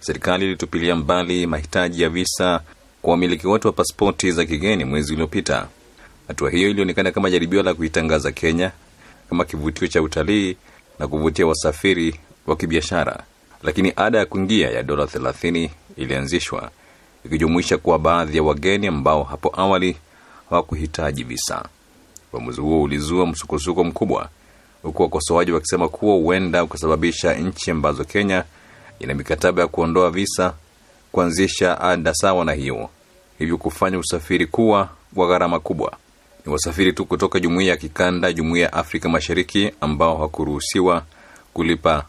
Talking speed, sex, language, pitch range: 135 wpm, male, Swahili, 80-90 Hz